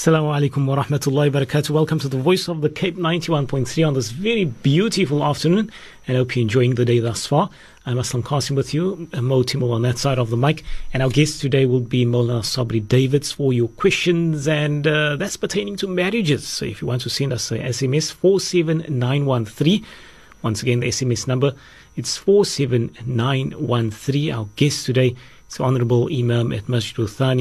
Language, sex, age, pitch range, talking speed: English, male, 40-59, 115-150 Hz, 180 wpm